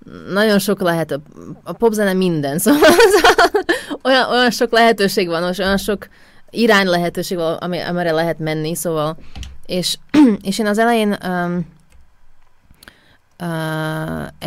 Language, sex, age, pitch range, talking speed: Hungarian, female, 20-39, 160-200 Hz, 120 wpm